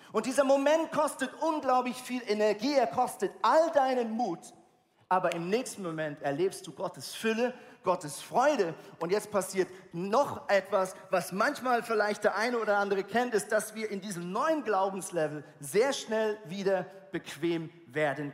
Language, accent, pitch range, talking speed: German, German, 185-255 Hz, 155 wpm